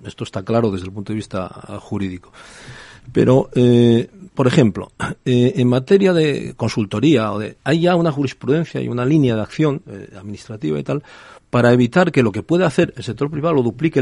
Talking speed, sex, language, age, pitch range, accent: 195 wpm, male, Spanish, 40-59, 115-155 Hz, Spanish